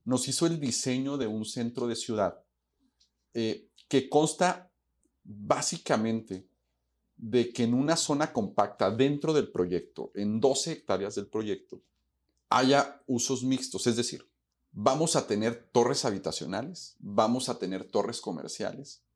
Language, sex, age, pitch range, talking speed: Spanish, male, 40-59, 95-130 Hz, 130 wpm